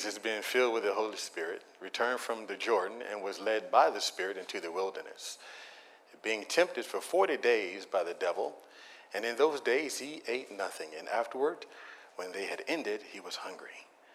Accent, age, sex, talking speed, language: American, 40-59, male, 185 wpm, English